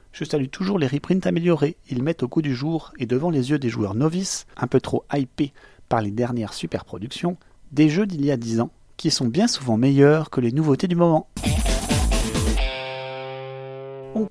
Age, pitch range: 30-49, 125-170 Hz